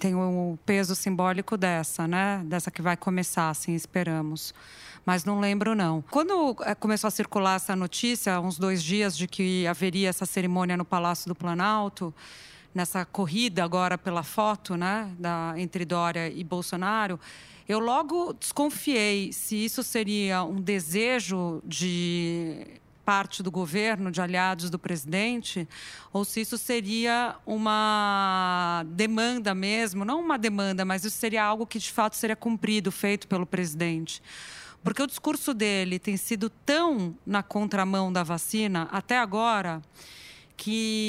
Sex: female